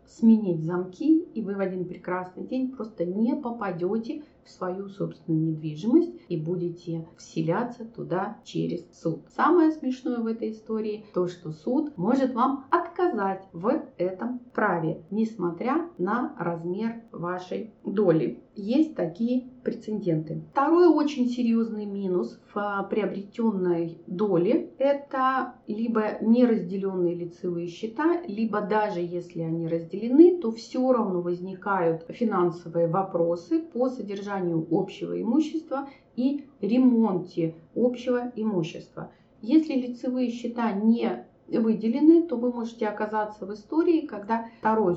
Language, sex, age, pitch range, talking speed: Russian, female, 30-49, 180-250 Hz, 115 wpm